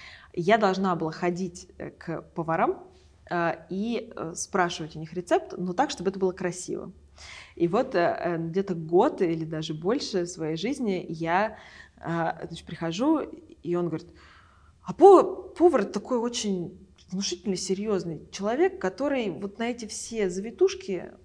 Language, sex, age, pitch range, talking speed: Russian, female, 20-39, 175-260 Hz, 140 wpm